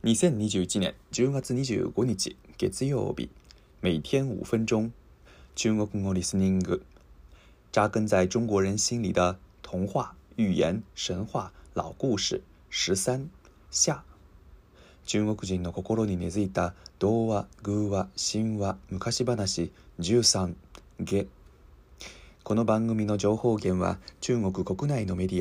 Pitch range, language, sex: 90-110 Hz, Japanese, male